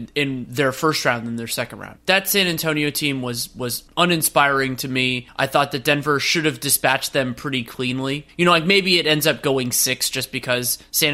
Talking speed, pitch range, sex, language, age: 210 wpm, 135-170 Hz, male, English, 20-39